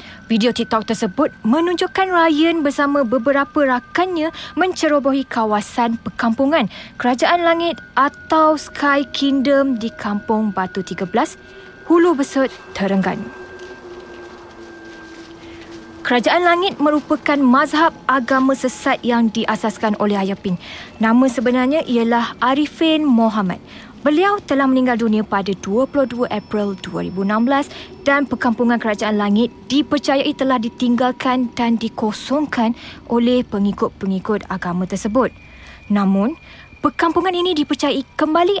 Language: Malay